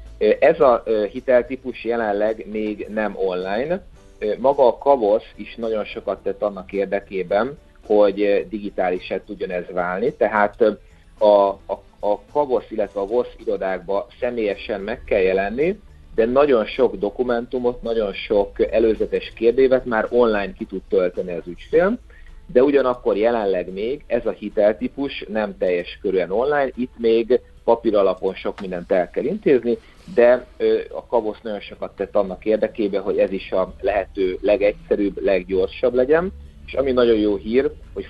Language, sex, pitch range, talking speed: Hungarian, male, 95-140 Hz, 140 wpm